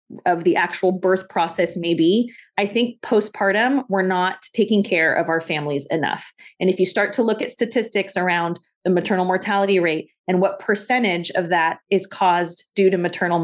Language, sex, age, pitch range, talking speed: English, female, 20-39, 185-230 Hz, 185 wpm